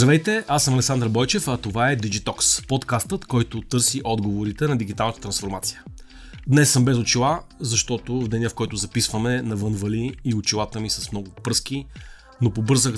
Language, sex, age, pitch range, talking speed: Bulgarian, male, 30-49, 105-130 Hz, 160 wpm